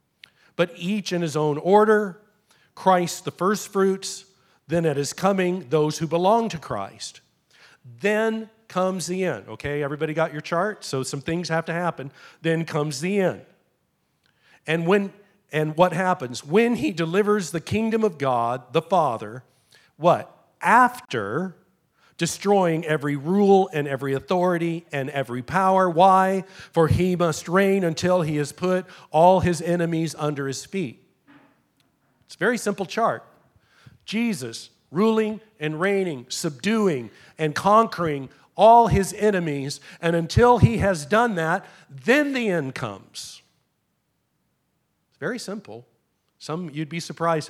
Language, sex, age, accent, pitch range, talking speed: English, male, 40-59, American, 145-195 Hz, 140 wpm